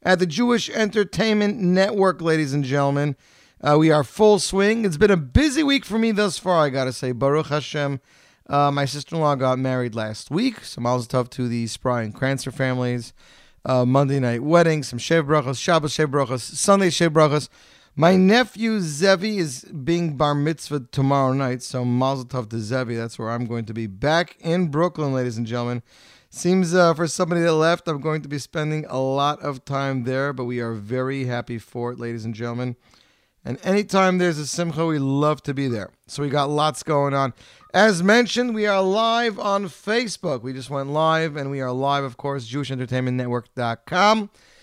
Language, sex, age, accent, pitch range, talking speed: English, male, 30-49, American, 130-180 Hz, 190 wpm